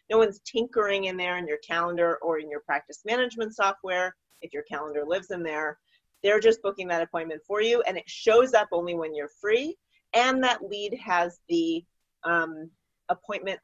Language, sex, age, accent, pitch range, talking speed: English, female, 30-49, American, 155-220 Hz, 185 wpm